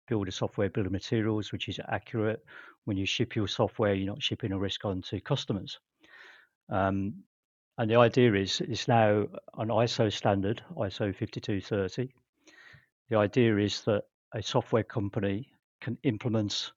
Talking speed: 155 wpm